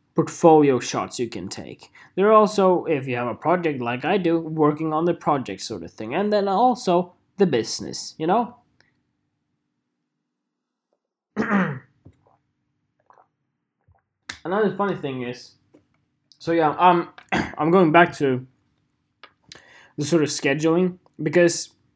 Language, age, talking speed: English, 20-39, 130 wpm